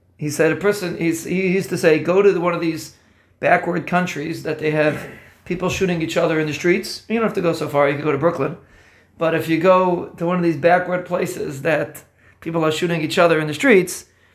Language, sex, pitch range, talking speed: English, male, 155-185 Hz, 245 wpm